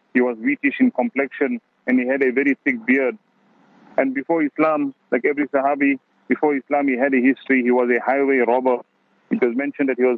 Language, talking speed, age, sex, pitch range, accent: English, 205 wpm, 40-59, male, 130-150 Hz, Indian